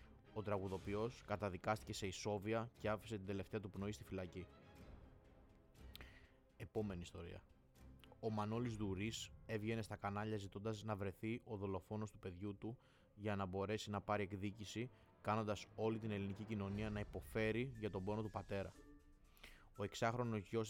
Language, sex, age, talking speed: Greek, male, 20-39, 145 wpm